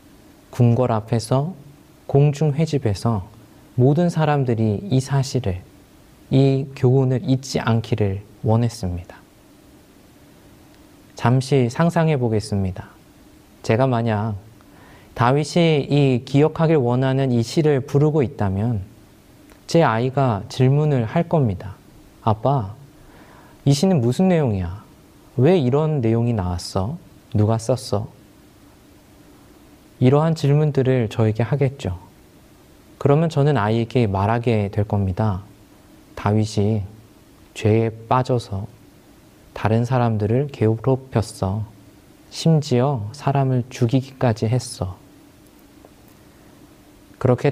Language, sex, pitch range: Korean, male, 105-140 Hz